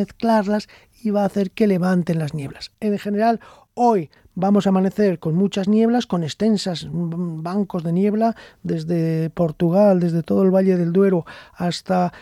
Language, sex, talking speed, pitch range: Spanish, male, 155 wpm, 175-210 Hz